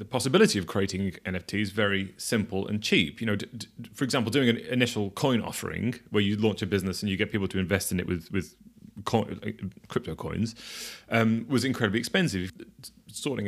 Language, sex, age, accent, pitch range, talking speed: English, male, 30-49, British, 95-115 Hz, 185 wpm